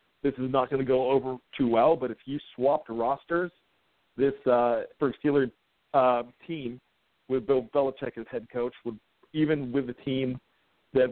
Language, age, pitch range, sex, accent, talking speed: English, 50-69, 115-140 Hz, male, American, 175 wpm